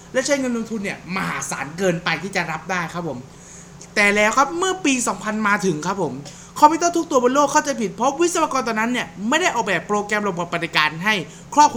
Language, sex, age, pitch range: Thai, male, 20-39, 190-285 Hz